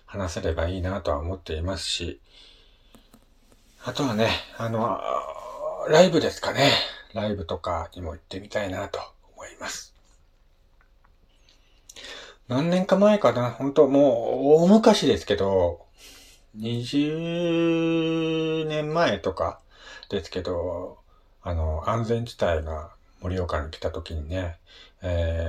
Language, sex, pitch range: Japanese, male, 85-125 Hz